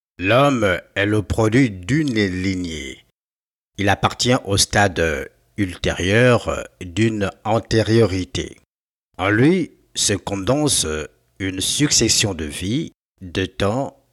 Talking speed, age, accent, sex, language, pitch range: 100 wpm, 60-79, French, male, French, 95-120 Hz